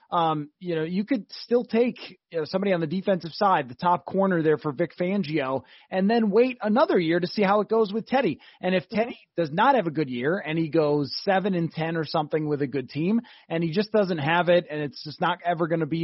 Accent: American